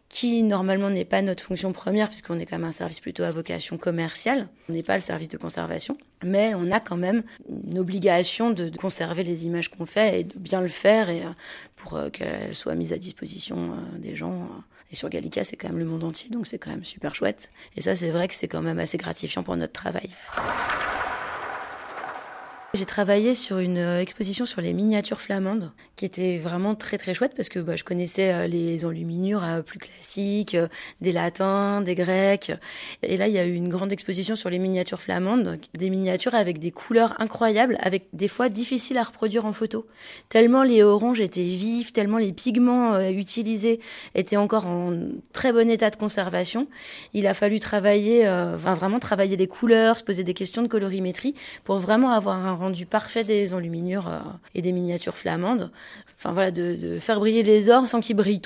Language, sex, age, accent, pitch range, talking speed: French, female, 20-39, French, 175-225 Hz, 195 wpm